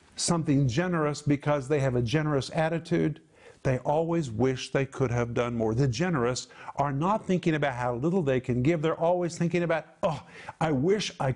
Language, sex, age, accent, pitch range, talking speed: English, male, 50-69, American, 140-175 Hz, 185 wpm